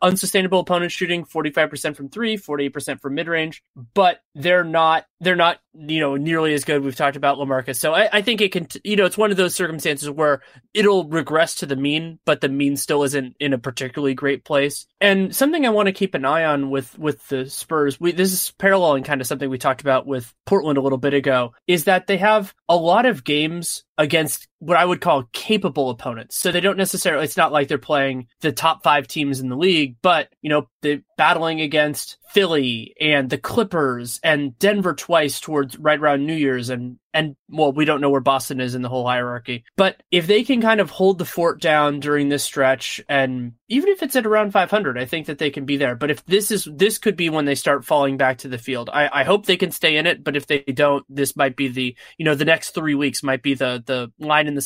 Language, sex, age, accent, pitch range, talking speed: English, male, 20-39, American, 140-175 Hz, 235 wpm